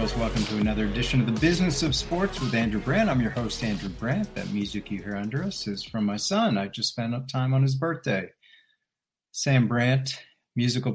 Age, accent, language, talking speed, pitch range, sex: 50-69, American, English, 210 wpm, 110-135 Hz, male